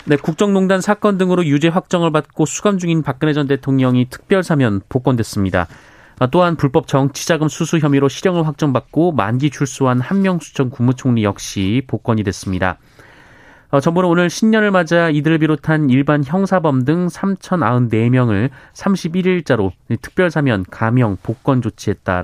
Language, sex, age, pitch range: Korean, male, 30-49, 115-165 Hz